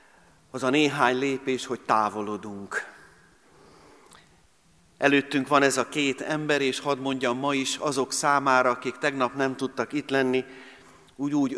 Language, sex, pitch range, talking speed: Hungarian, male, 120-140 Hz, 135 wpm